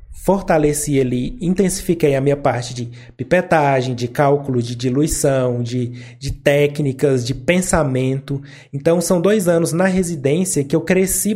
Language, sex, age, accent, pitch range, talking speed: Portuguese, male, 20-39, Brazilian, 135-170 Hz, 135 wpm